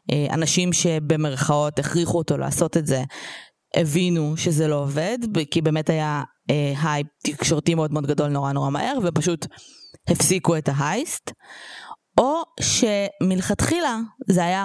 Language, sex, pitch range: Hebrew, female, 150-190 Hz